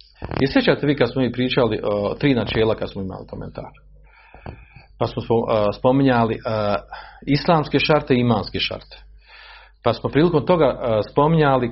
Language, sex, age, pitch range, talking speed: Croatian, male, 40-59, 115-170 Hz, 150 wpm